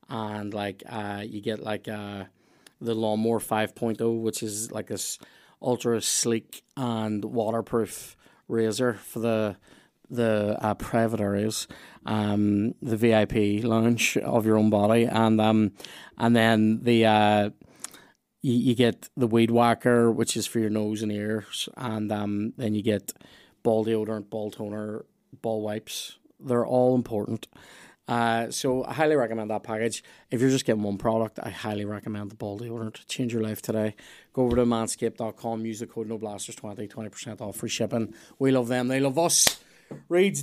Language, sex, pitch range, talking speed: English, male, 110-140 Hz, 165 wpm